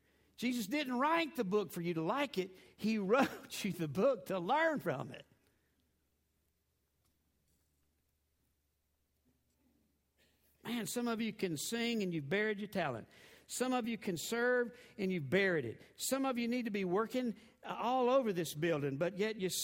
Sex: male